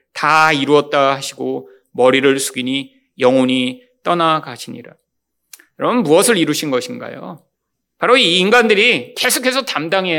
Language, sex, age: Korean, male, 30-49